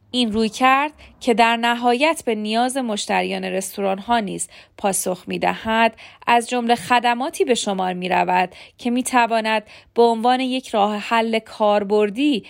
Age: 40-59